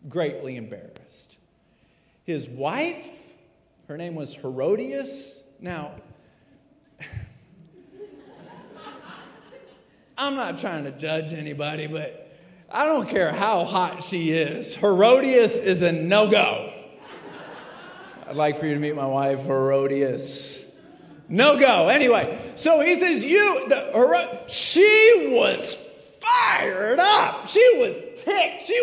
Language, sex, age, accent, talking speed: English, male, 40-59, American, 105 wpm